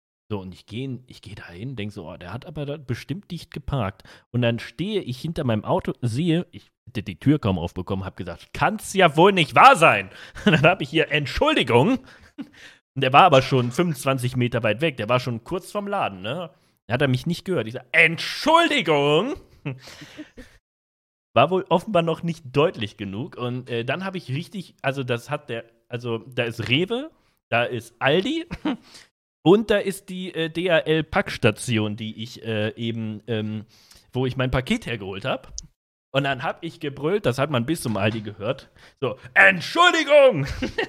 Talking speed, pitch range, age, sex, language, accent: 185 wpm, 115-165 Hz, 40-59, male, German, German